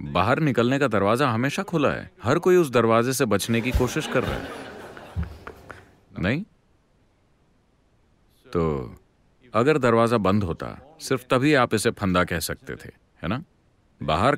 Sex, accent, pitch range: male, Indian, 90-135 Hz